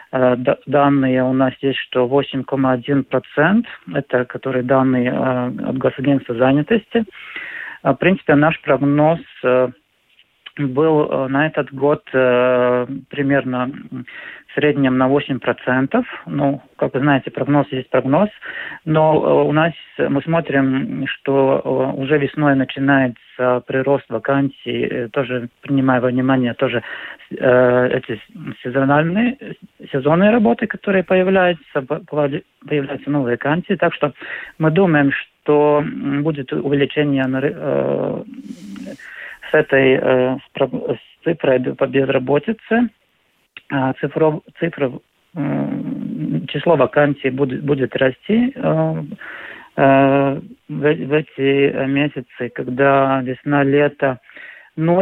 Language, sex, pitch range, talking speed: Russian, male, 130-150 Hz, 90 wpm